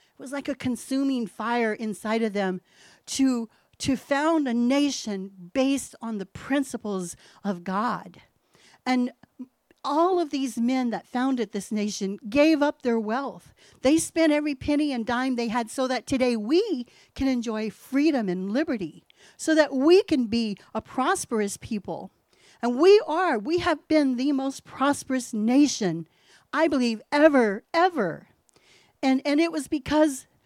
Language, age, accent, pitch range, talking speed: English, 40-59, American, 220-285 Hz, 155 wpm